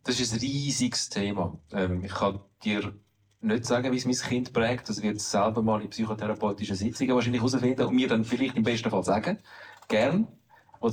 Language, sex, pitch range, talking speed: German, male, 105-125 Hz, 185 wpm